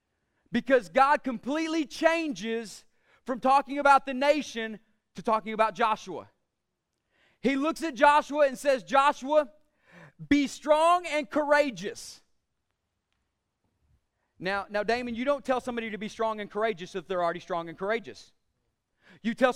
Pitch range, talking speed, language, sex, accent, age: 230-295 Hz, 135 wpm, English, male, American, 30-49